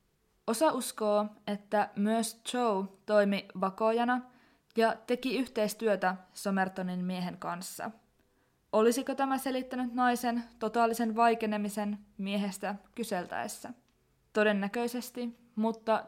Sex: female